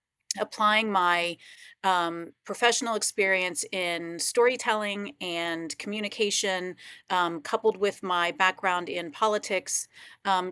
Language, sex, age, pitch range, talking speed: English, female, 40-59, 185-220 Hz, 95 wpm